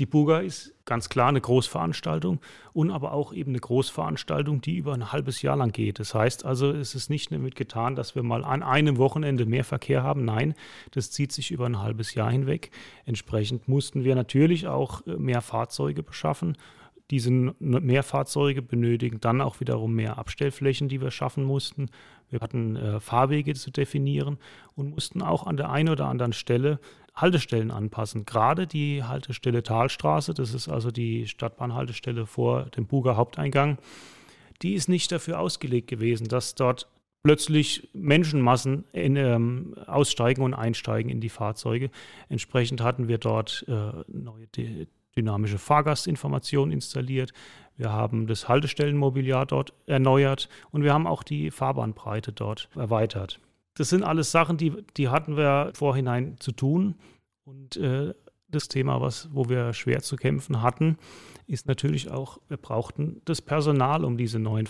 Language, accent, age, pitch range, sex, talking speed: German, German, 30-49, 115-145 Hz, male, 155 wpm